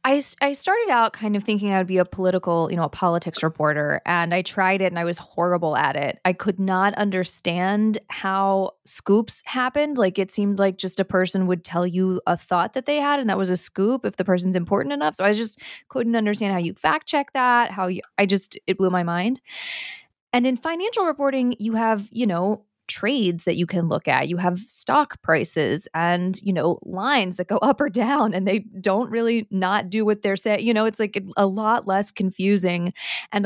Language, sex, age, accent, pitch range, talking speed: English, female, 20-39, American, 180-215 Hz, 215 wpm